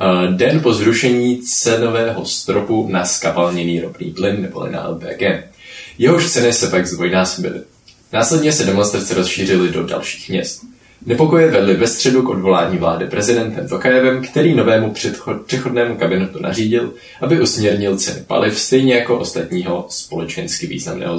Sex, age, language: male, 20-39, Czech